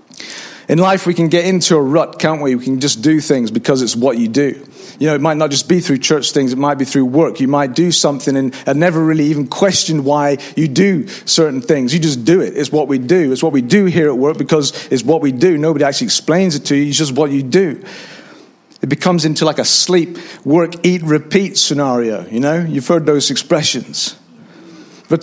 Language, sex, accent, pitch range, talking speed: English, male, British, 145-175 Hz, 230 wpm